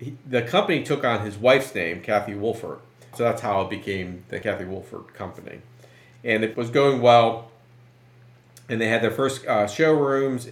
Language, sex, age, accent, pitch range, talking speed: English, male, 40-59, American, 100-125 Hz, 175 wpm